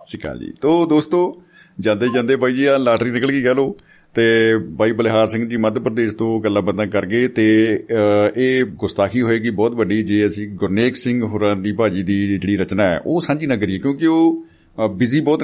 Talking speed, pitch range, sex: 185 wpm, 100-135 Hz, male